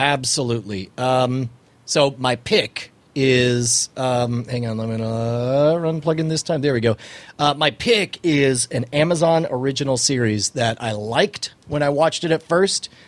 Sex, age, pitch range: male, 40-59, 120-150 Hz